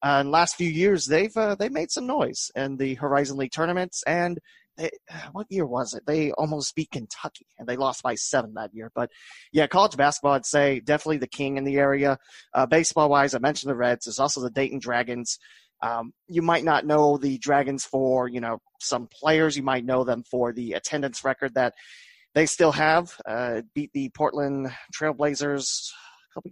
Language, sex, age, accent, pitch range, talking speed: English, male, 30-49, American, 130-160 Hz, 195 wpm